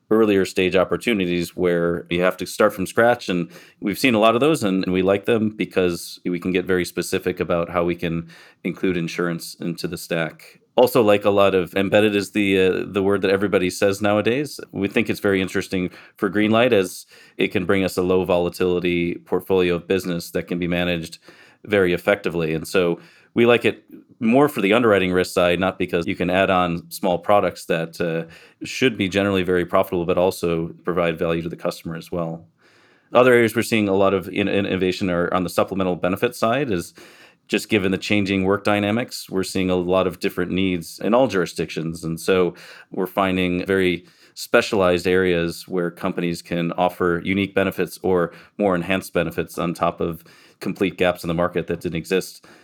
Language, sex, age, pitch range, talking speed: English, male, 30-49, 85-100 Hz, 195 wpm